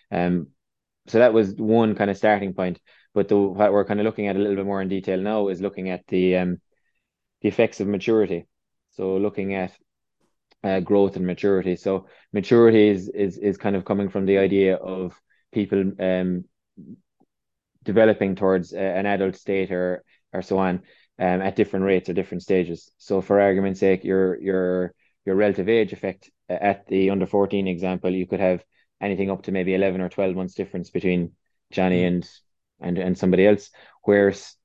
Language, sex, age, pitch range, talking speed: English, male, 20-39, 90-100 Hz, 185 wpm